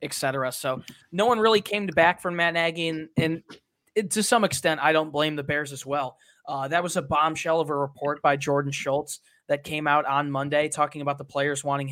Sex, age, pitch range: male, 20-39, 140-160 Hz